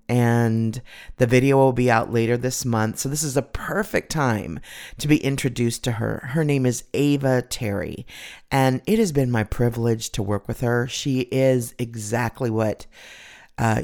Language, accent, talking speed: English, American, 175 wpm